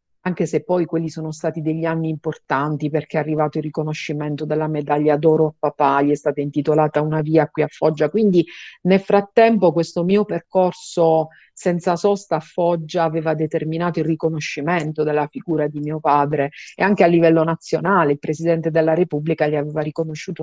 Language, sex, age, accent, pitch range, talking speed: Italian, female, 50-69, native, 150-175 Hz, 175 wpm